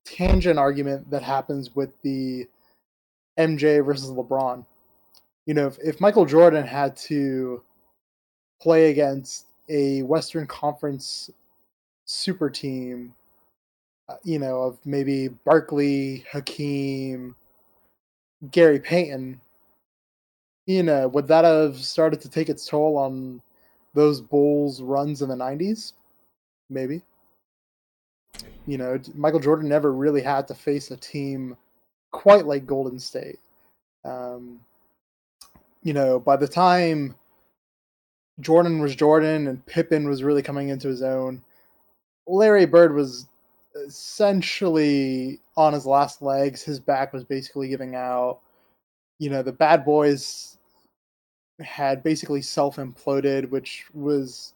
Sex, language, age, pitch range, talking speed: male, English, 20-39, 130-150 Hz, 120 wpm